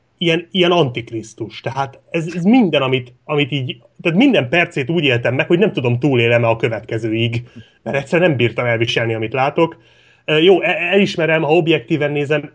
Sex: male